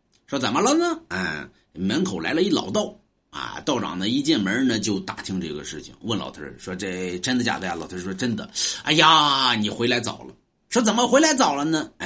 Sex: male